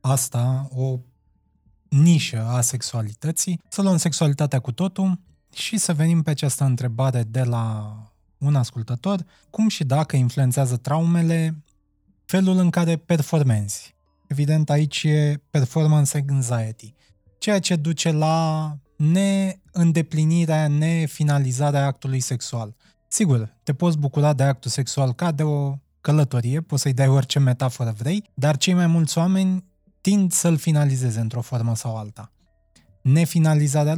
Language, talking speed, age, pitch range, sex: Romanian, 125 wpm, 20-39, 120-160 Hz, male